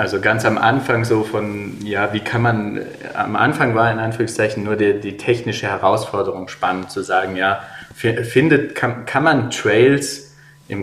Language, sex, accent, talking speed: German, male, German, 165 wpm